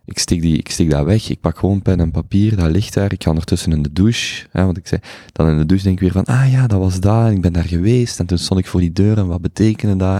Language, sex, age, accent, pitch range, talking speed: Dutch, male, 20-39, Belgian, 80-95 Hz, 300 wpm